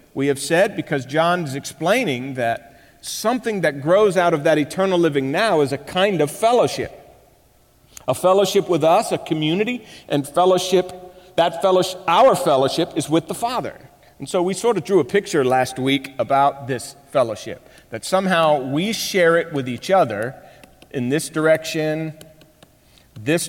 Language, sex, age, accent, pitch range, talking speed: English, male, 50-69, American, 140-180 Hz, 160 wpm